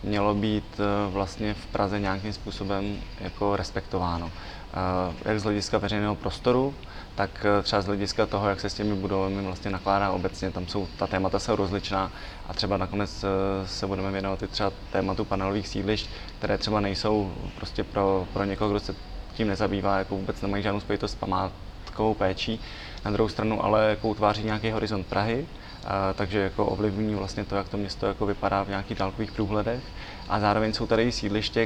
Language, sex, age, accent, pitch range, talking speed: Czech, male, 20-39, native, 95-110 Hz, 175 wpm